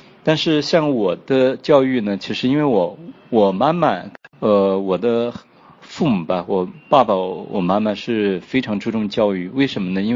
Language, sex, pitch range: Chinese, male, 110-135 Hz